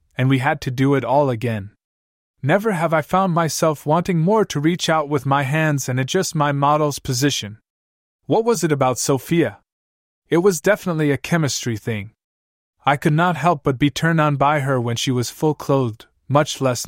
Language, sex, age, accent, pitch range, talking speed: English, male, 20-39, American, 115-150 Hz, 190 wpm